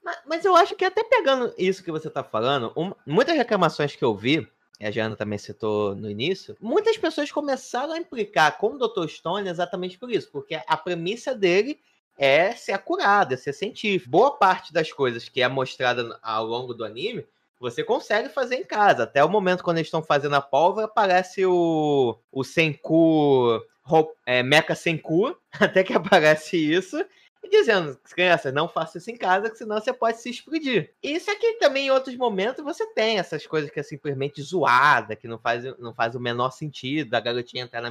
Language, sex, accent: Portuguese, male, Brazilian